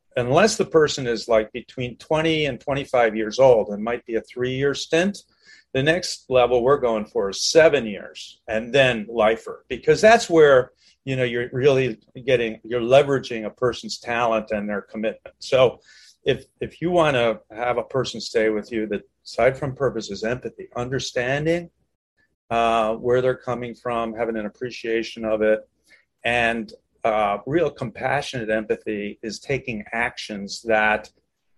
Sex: male